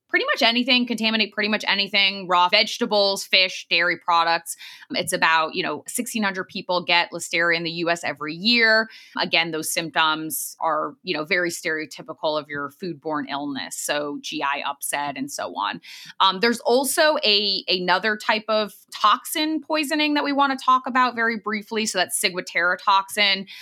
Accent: American